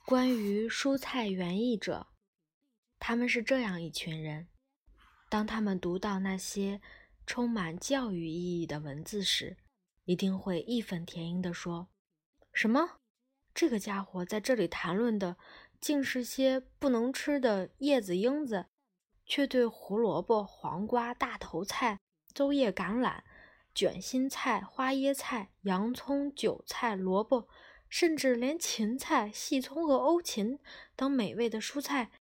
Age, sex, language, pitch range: 20-39, female, Chinese, 190-265 Hz